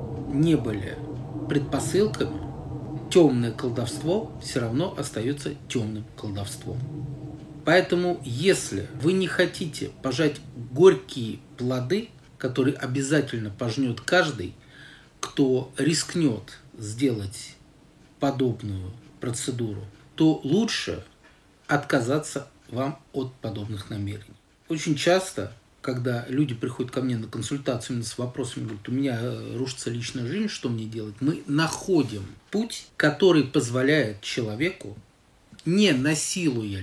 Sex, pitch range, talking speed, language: male, 115-150 Hz, 100 wpm, Russian